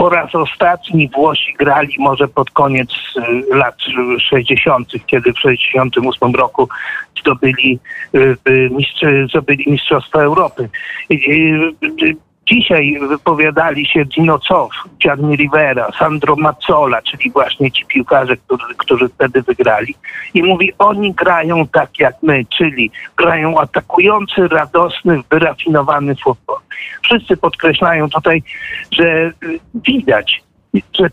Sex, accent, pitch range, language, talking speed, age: male, native, 150-195 Hz, Polish, 100 wpm, 50-69